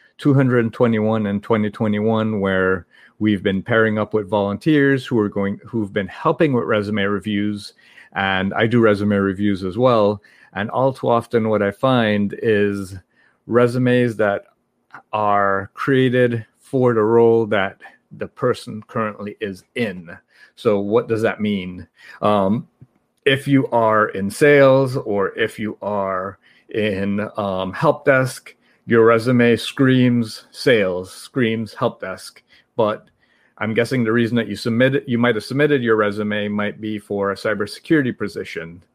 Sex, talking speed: male, 145 wpm